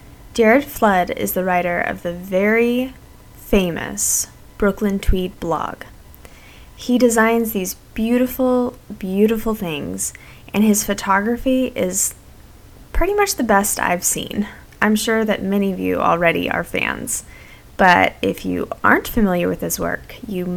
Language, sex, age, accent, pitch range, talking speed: English, female, 10-29, American, 180-245 Hz, 135 wpm